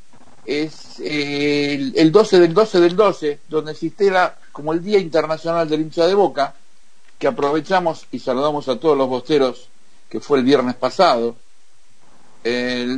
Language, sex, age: Spanish, male, 50-69